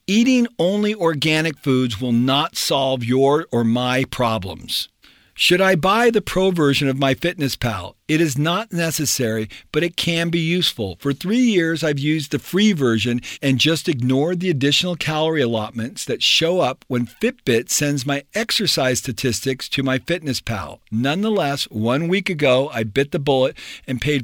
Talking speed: 170 wpm